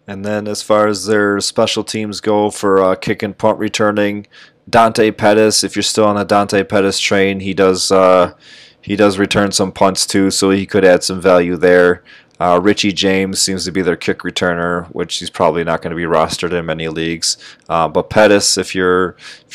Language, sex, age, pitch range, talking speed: English, male, 20-39, 90-105 Hz, 205 wpm